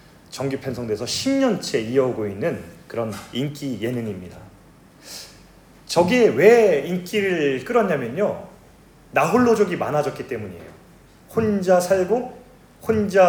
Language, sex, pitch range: Korean, male, 145-210 Hz